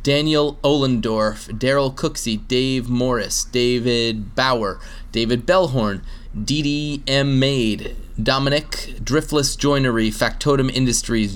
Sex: male